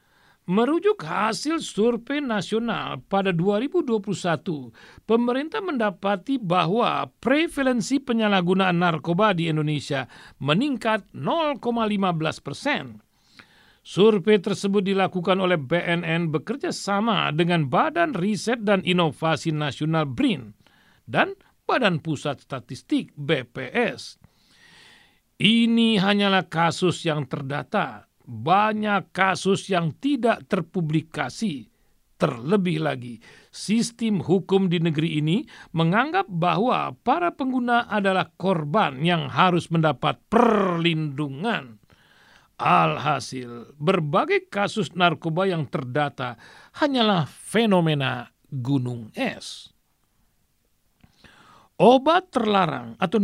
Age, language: 50-69, Indonesian